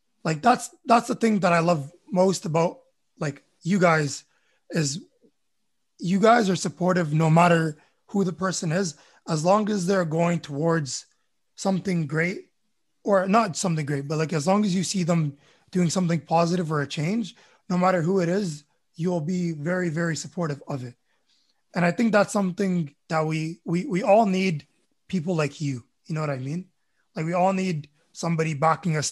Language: English